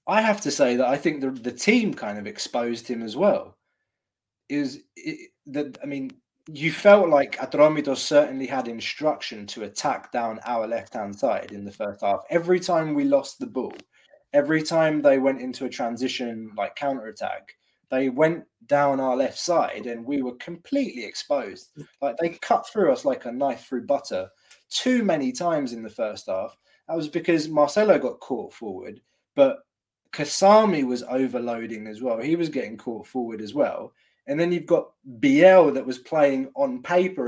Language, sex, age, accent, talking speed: English, male, 20-39, British, 180 wpm